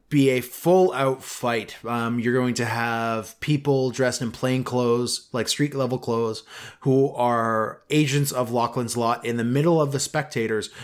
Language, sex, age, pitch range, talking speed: English, male, 20-39, 120-145 Hz, 170 wpm